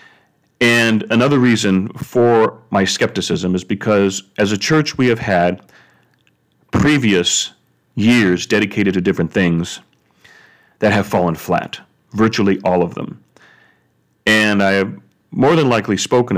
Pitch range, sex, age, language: 100-120 Hz, male, 40-59, English